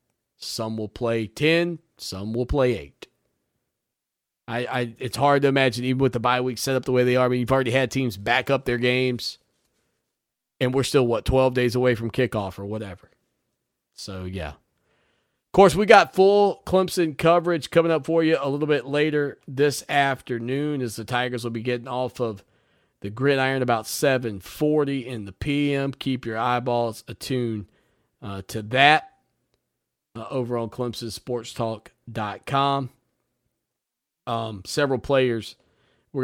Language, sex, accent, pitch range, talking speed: English, male, American, 110-135 Hz, 155 wpm